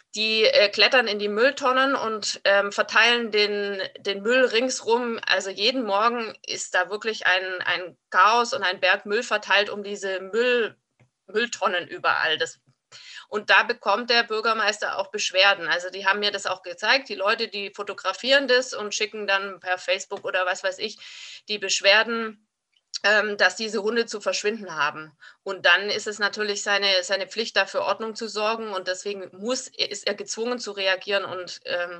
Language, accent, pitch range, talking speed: German, German, 185-220 Hz, 165 wpm